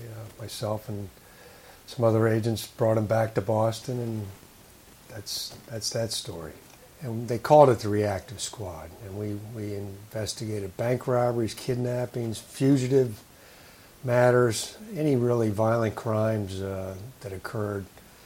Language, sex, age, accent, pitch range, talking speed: English, male, 60-79, American, 100-120 Hz, 125 wpm